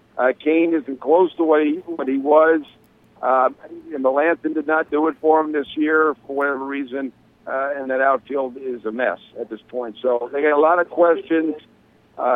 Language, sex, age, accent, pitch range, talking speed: English, male, 60-79, American, 140-160 Hz, 205 wpm